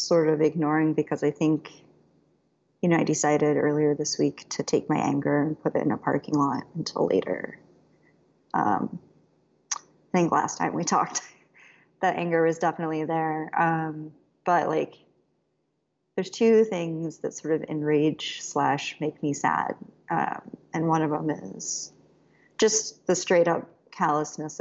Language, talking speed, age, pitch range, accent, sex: English, 155 wpm, 30-49, 150-165 Hz, American, female